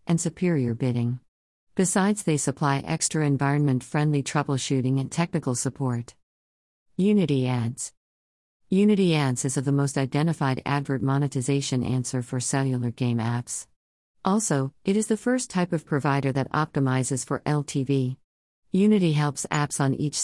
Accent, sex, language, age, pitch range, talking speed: American, female, English, 50-69, 130-160 Hz, 135 wpm